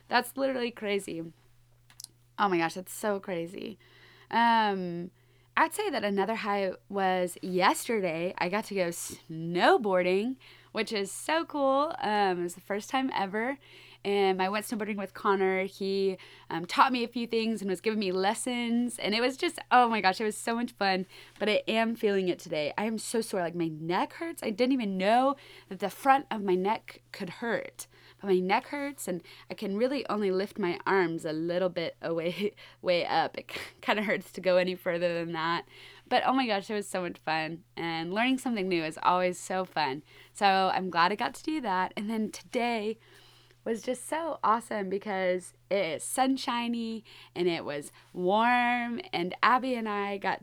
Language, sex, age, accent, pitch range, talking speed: English, female, 20-39, American, 180-230 Hz, 190 wpm